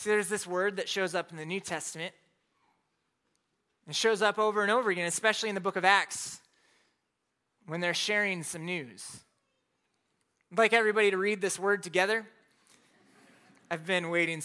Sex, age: male, 20-39